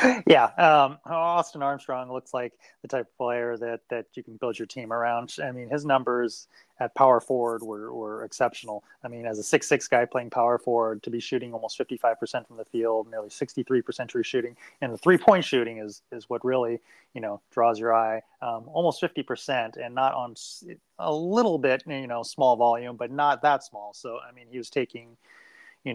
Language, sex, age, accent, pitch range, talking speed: English, male, 30-49, American, 115-130 Hz, 200 wpm